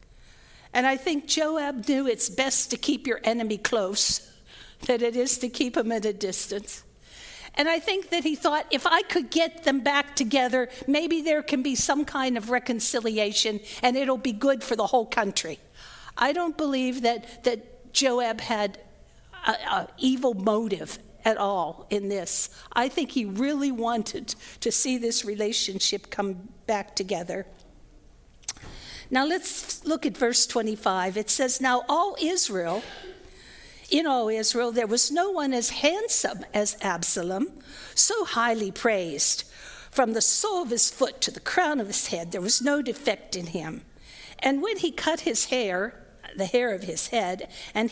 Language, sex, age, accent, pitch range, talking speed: English, female, 50-69, American, 215-290 Hz, 165 wpm